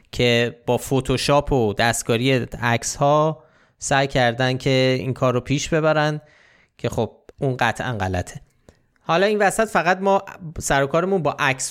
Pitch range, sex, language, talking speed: 120-155 Hz, male, Persian, 140 wpm